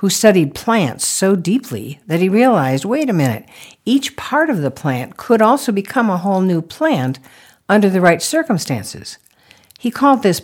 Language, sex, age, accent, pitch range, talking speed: English, female, 60-79, American, 135-210 Hz, 170 wpm